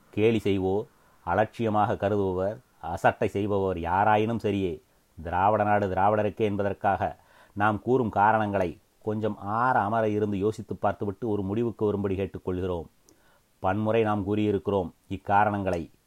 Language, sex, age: Tamil, male, 30-49